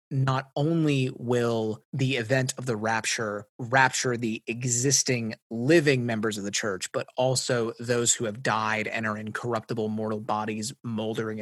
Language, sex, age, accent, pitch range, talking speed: English, male, 30-49, American, 110-135 Hz, 150 wpm